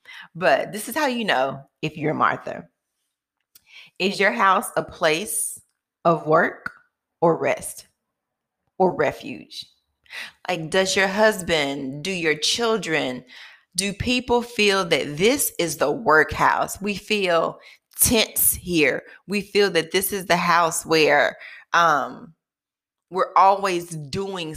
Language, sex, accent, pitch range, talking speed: English, female, American, 160-210 Hz, 125 wpm